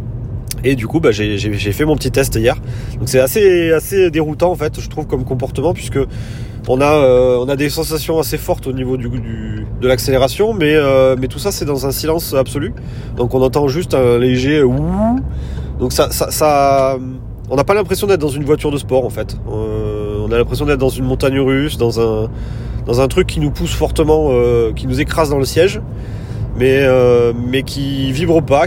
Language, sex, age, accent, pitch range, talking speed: French, male, 30-49, French, 115-140 Hz, 215 wpm